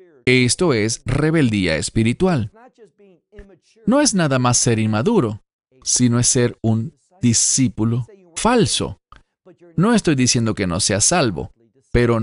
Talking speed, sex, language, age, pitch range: 120 wpm, male, English, 40-59, 110-165 Hz